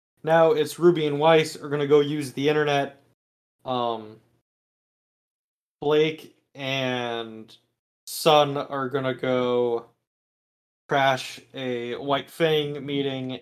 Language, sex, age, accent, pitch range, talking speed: English, male, 20-39, American, 120-150 Hz, 110 wpm